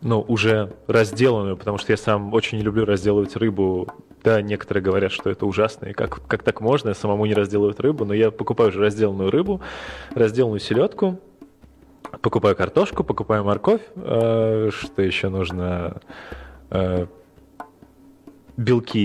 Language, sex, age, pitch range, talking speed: Russian, male, 20-39, 100-125 Hz, 145 wpm